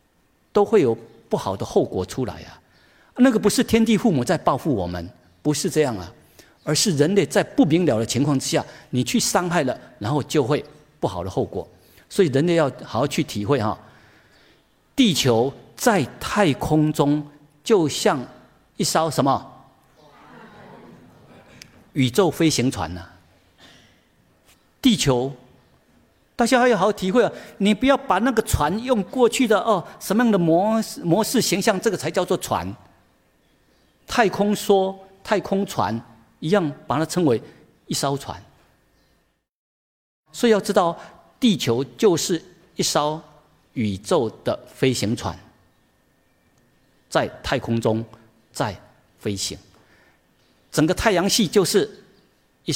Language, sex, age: Chinese, male, 50-69